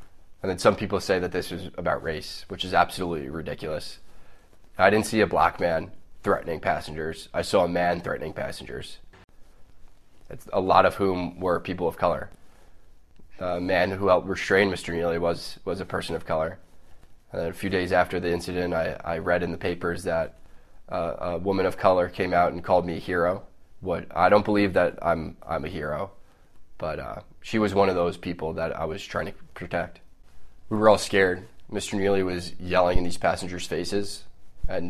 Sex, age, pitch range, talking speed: male, 20-39, 85-95 Hz, 185 wpm